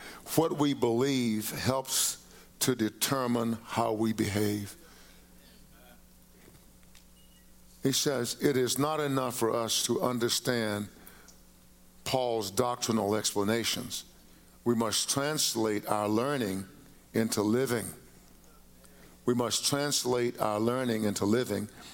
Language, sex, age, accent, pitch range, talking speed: English, male, 50-69, American, 105-130 Hz, 100 wpm